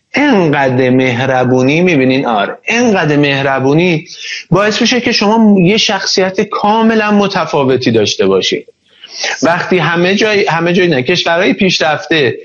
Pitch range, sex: 145-190 Hz, male